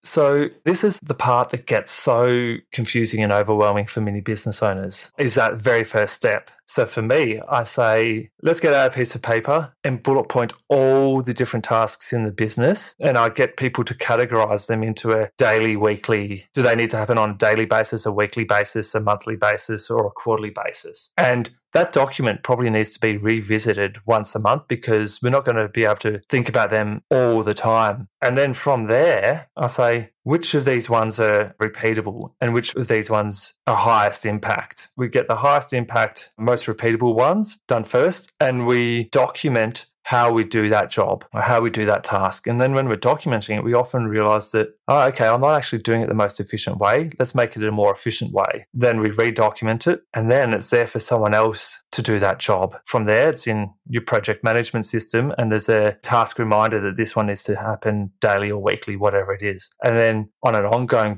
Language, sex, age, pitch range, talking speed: English, male, 20-39, 110-125 Hz, 210 wpm